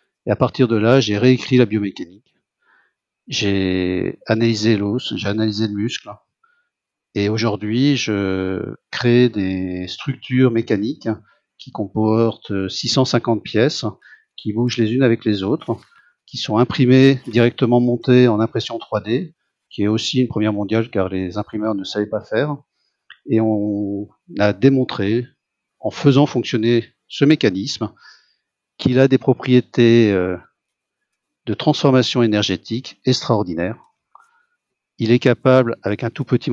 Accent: French